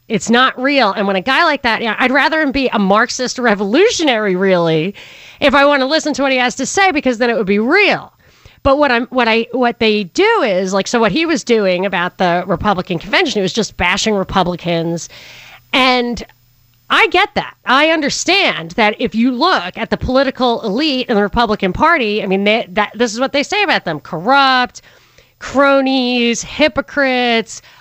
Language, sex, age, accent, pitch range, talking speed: English, female, 30-49, American, 210-280 Hz, 200 wpm